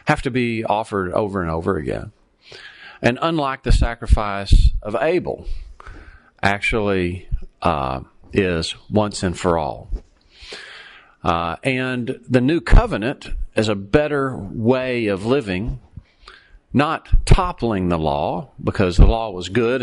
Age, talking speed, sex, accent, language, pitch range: 40-59, 125 wpm, male, American, English, 90-120 Hz